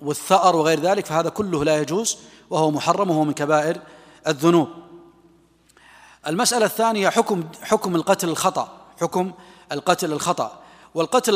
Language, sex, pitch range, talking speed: Arabic, male, 165-195 Hz, 120 wpm